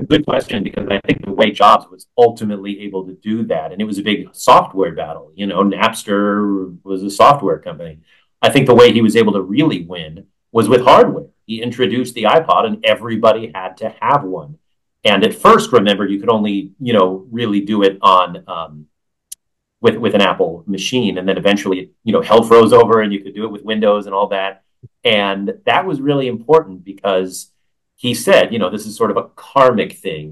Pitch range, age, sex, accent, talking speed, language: 95-115 Hz, 40-59, male, American, 210 wpm, English